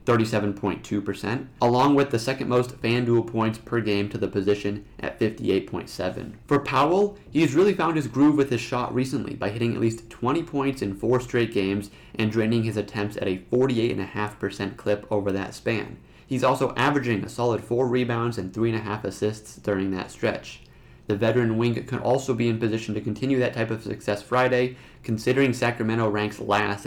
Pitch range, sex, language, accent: 100-125 Hz, male, English, American